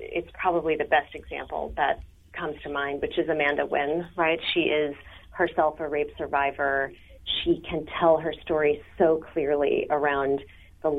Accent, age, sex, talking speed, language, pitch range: American, 30-49, female, 160 wpm, English, 145-170 Hz